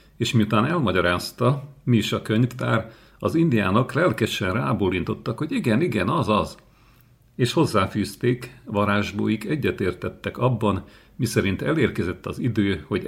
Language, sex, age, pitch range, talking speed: Hungarian, male, 50-69, 95-120 Hz, 120 wpm